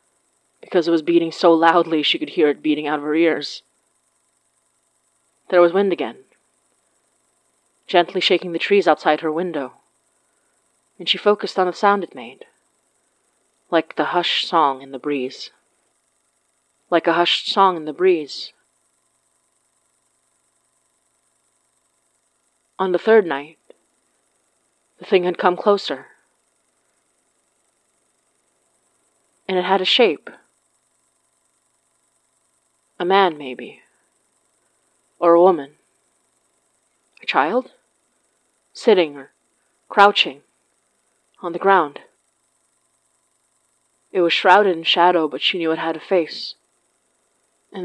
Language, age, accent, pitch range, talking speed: English, 30-49, American, 160-185 Hz, 110 wpm